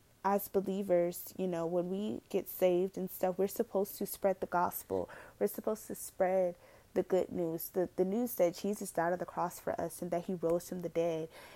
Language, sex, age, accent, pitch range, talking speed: English, female, 20-39, American, 175-205 Hz, 215 wpm